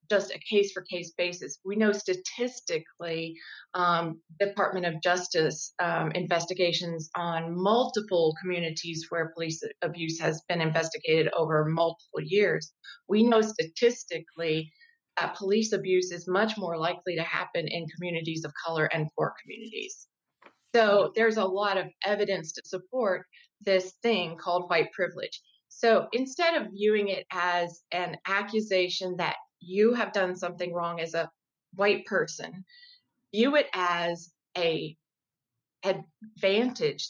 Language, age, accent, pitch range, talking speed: English, 30-49, American, 165-210 Hz, 130 wpm